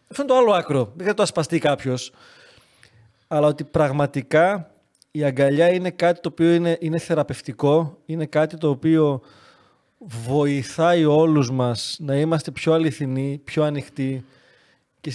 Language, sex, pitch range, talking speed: Greek, male, 140-175 Hz, 145 wpm